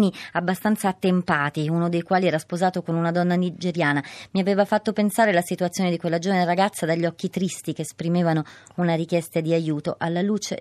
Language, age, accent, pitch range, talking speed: Italian, 30-49, native, 165-195 Hz, 180 wpm